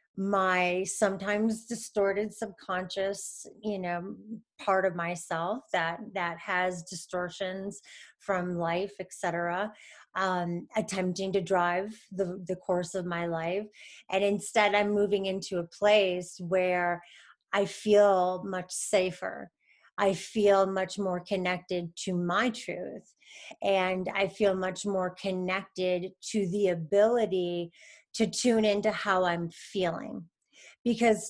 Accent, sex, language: American, female, English